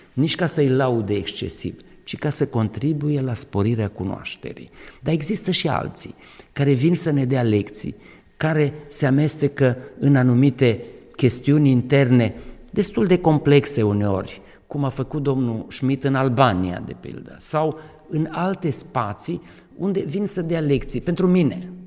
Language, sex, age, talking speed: Romanian, male, 50-69, 145 wpm